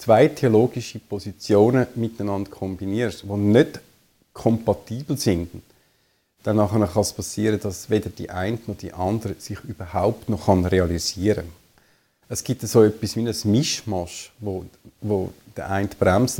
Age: 50-69